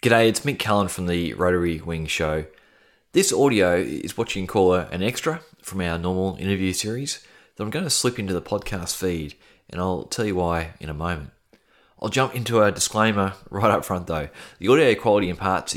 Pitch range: 80-100 Hz